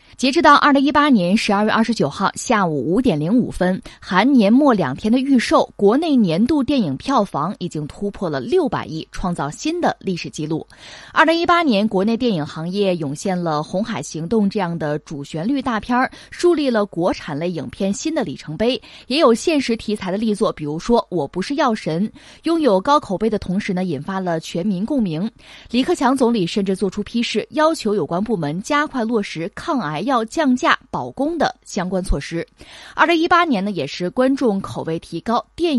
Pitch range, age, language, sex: 180-270 Hz, 20-39, Chinese, female